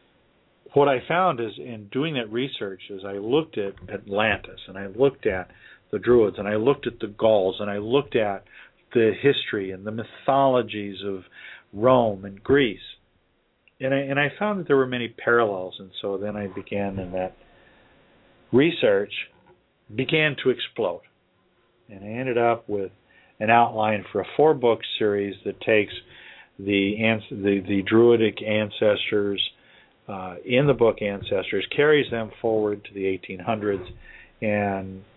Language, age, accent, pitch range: English, 50-69, American, 100-130 Hz